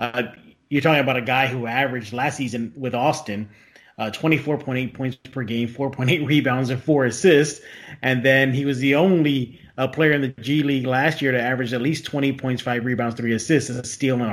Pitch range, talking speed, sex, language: 120-150 Hz, 210 wpm, male, English